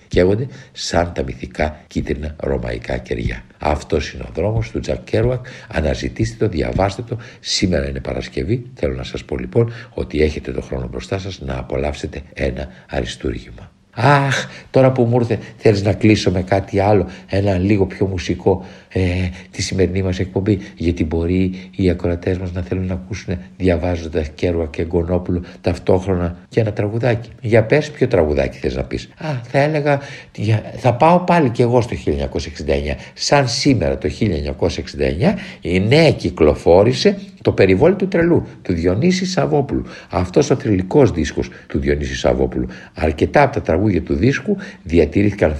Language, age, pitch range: Greek, 60-79, 80-115 Hz